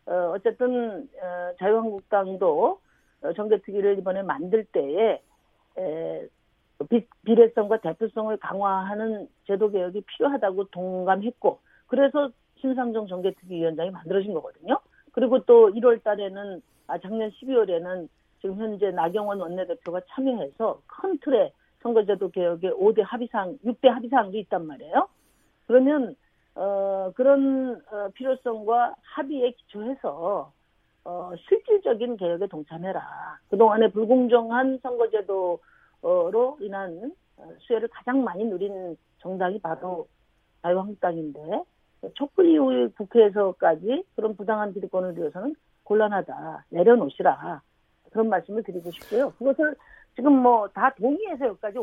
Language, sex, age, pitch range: Korean, female, 50-69, 190-255 Hz